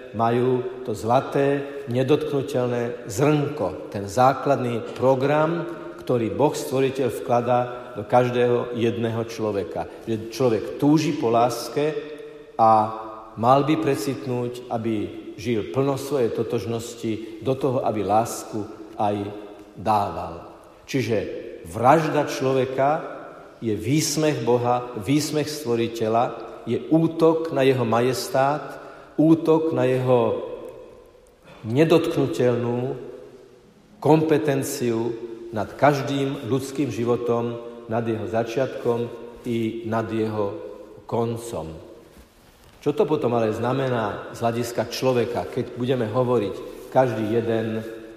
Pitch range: 115-140 Hz